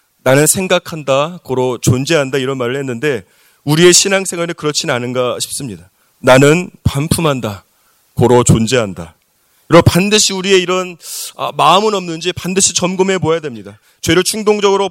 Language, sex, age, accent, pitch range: Korean, male, 30-49, native, 155-195 Hz